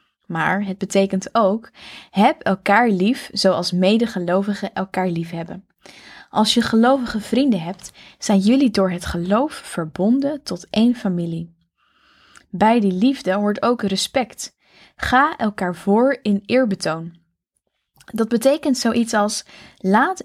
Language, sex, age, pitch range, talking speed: Dutch, female, 10-29, 185-235 Hz, 125 wpm